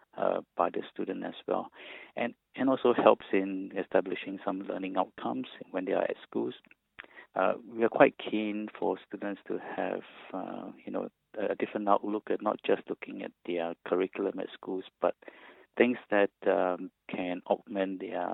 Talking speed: 165 wpm